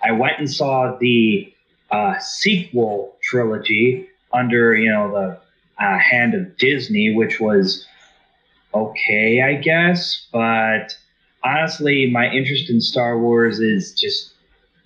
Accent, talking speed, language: American, 120 wpm, English